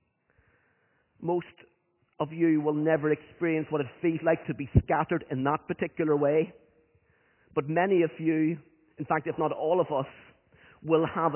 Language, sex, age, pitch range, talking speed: English, male, 40-59, 150-175 Hz, 160 wpm